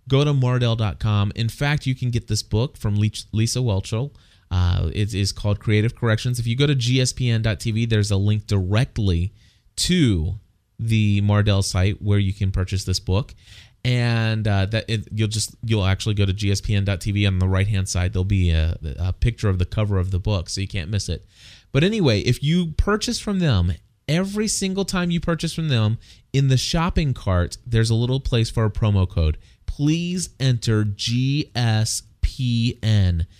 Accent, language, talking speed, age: American, English, 175 wpm, 30-49